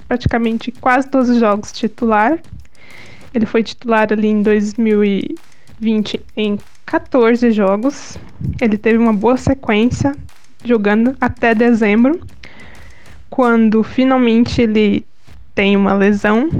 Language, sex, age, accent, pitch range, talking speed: Portuguese, female, 10-29, Brazilian, 220-255 Hz, 100 wpm